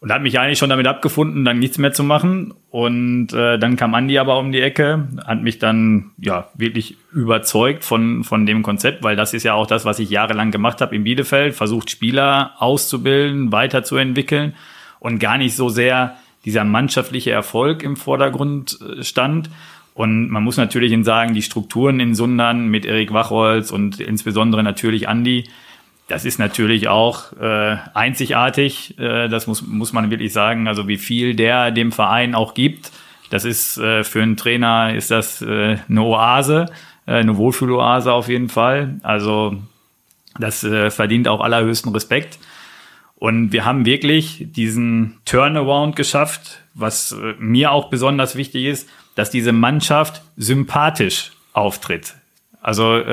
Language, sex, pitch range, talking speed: German, male, 110-135 Hz, 160 wpm